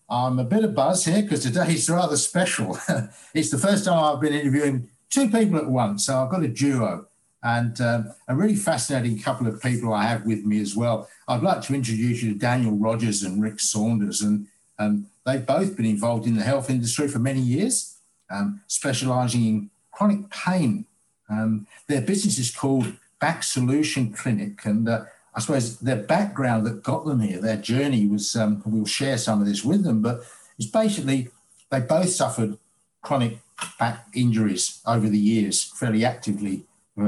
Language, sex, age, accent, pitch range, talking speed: English, male, 60-79, British, 110-145 Hz, 185 wpm